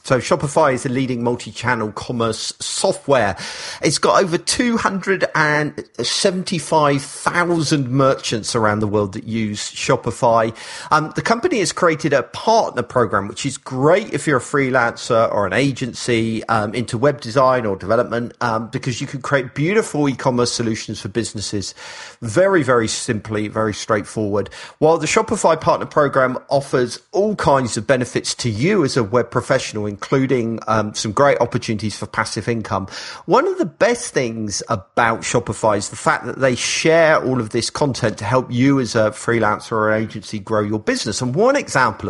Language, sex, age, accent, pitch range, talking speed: English, male, 40-59, British, 110-145 Hz, 160 wpm